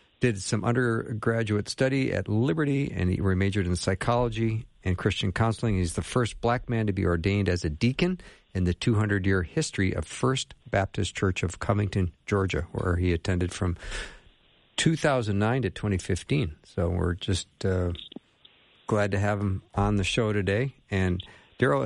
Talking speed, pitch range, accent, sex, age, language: 155 wpm, 95-120 Hz, American, male, 50-69, English